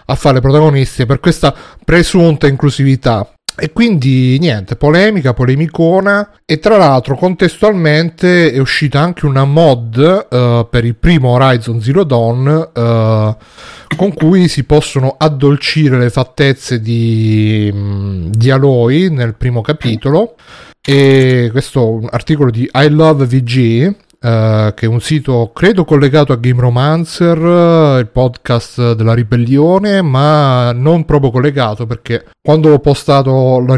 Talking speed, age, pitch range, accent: 135 wpm, 30-49, 120-155 Hz, native